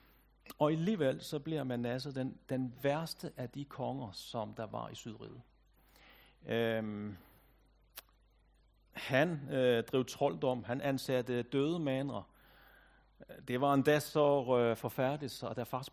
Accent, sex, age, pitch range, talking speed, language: native, male, 60-79, 120-150 Hz, 130 wpm, Danish